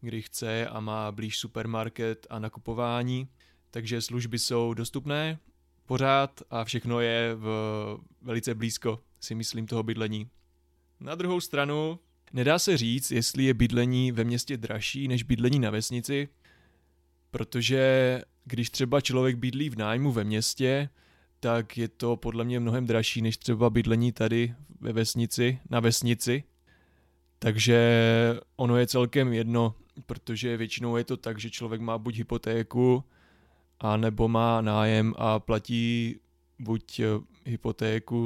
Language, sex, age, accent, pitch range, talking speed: Czech, male, 20-39, native, 110-120 Hz, 135 wpm